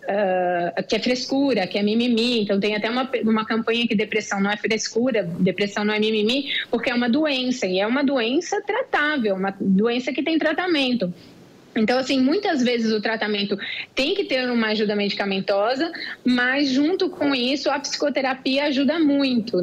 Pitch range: 215-285 Hz